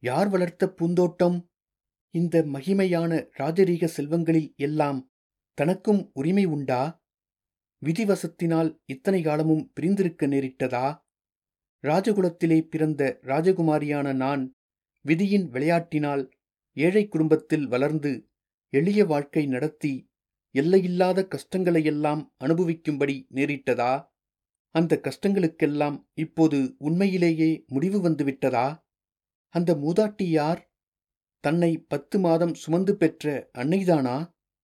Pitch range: 140-180 Hz